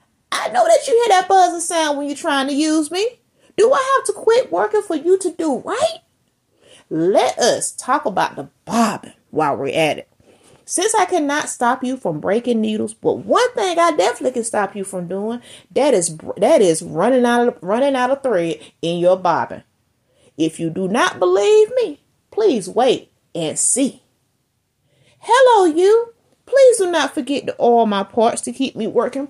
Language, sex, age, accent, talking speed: English, female, 30-49, American, 185 wpm